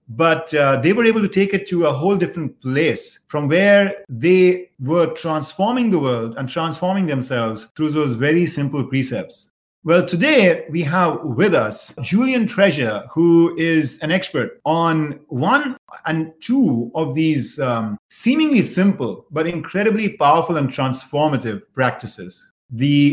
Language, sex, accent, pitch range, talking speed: English, male, Indian, 135-185 Hz, 145 wpm